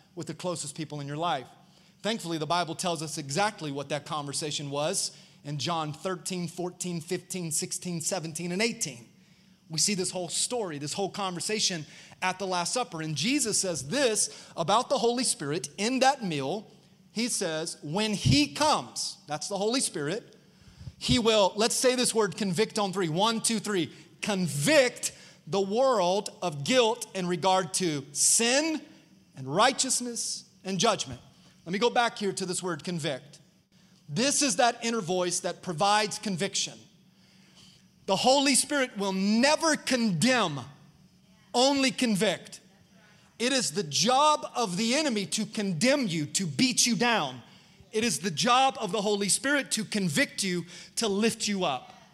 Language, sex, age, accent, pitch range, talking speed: English, male, 30-49, American, 175-225 Hz, 160 wpm